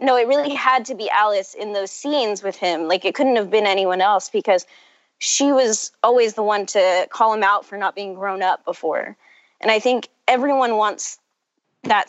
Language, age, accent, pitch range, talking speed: English, 20-39, American, 185-245 Hz, 205 wpm